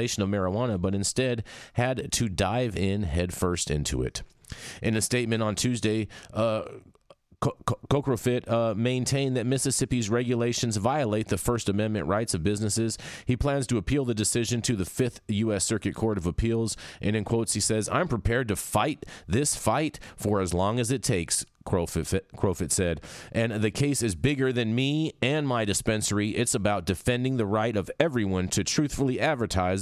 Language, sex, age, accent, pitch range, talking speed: English, male, 30-49, American, 100-125 Hz, 175 wpm